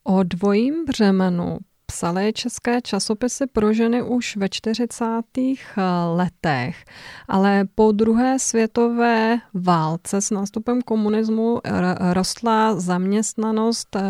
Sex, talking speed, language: female, 95 wpm, Czech